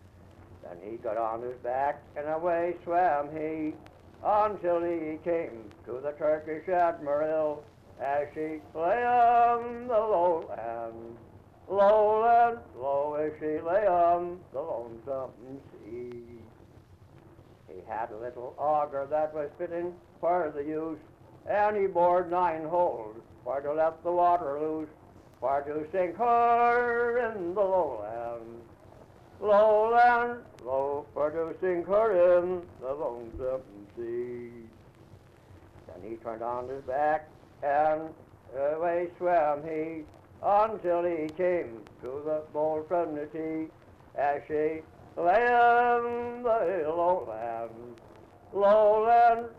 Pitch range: 115-175 Hz